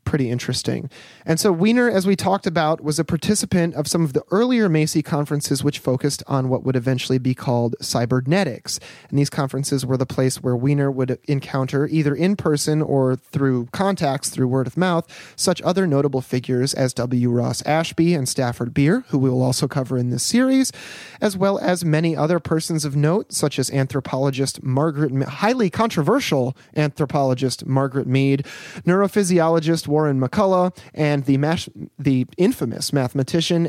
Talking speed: 165 wpm